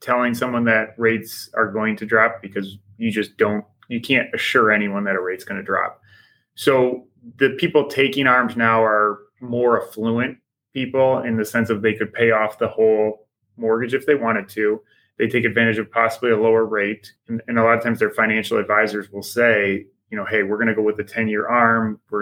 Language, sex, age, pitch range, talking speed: English, male, 20-39, 110-125 Hz, 210 wpm